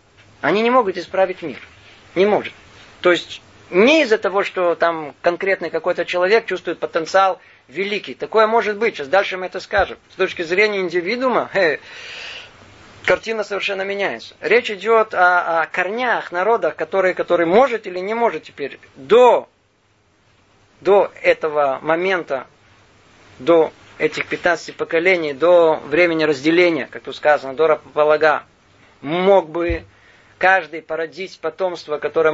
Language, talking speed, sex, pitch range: Russian, 130 wpm, male, 145-190 Hz